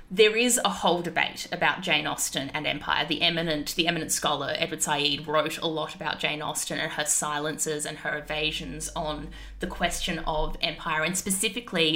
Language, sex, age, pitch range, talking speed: English, female, 20-39, 160-185 Hz, 180 wpm